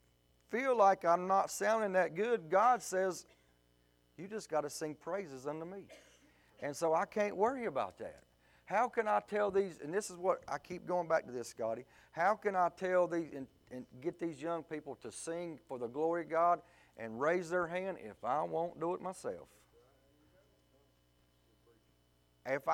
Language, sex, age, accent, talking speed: English, male, 40-59, American, 180 wpm